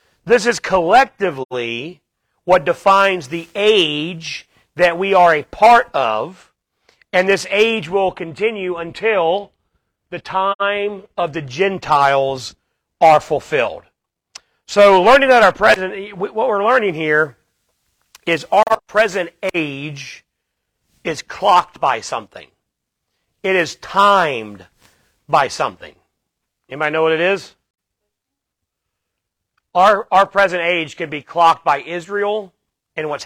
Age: 40-59